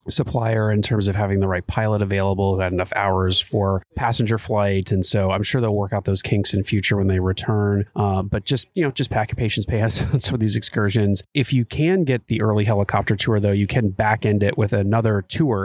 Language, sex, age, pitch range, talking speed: English, male, 30-49, 100-120 Hz, 230 wpm